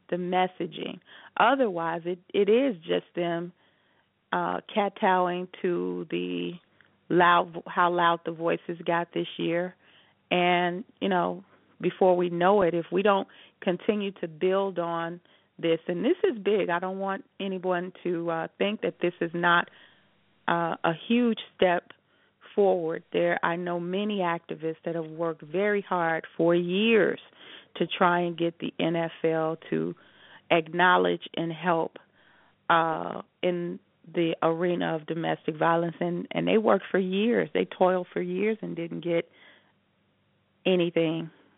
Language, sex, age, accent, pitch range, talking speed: English, female, 40-59, American, 165-185 Hz, 140 wpm